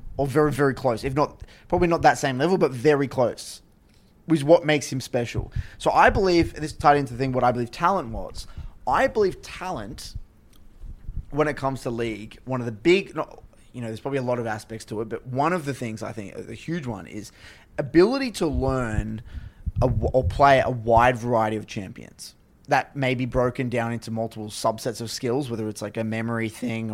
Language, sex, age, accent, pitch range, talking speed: English, male, 20-39, Australian, 110-150 Hz, 210 wpm